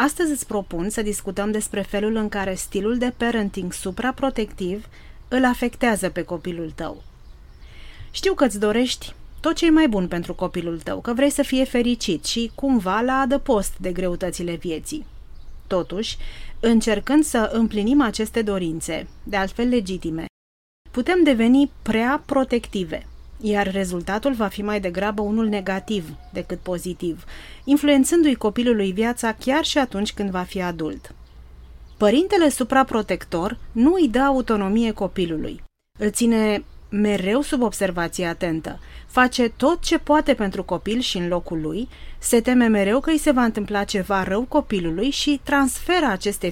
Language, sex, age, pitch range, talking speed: Romanian, female, 30-49, 185-255 Hz, 145 wpm